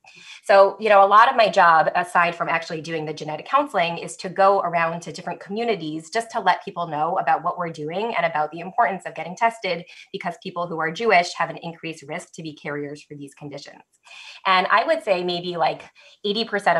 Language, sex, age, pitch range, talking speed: English, female, 20-39, 160-195 Hz, 215 wpm